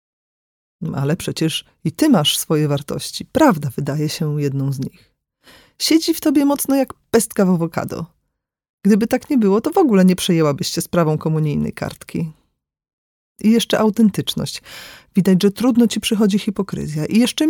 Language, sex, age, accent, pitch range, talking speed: Polish, female, 40-59, native, 160-225 Hz, 155 wpm